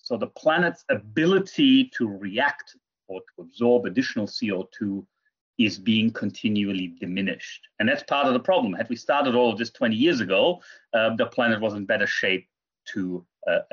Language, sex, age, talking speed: English, male, 30-49, 170 wpm